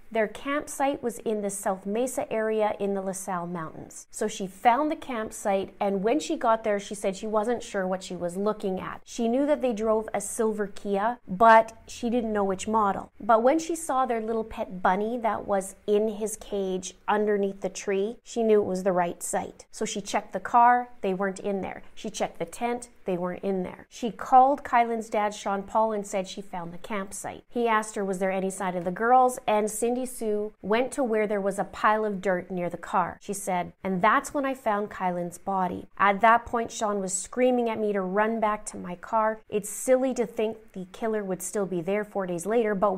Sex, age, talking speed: female, 30-49, 225 wpm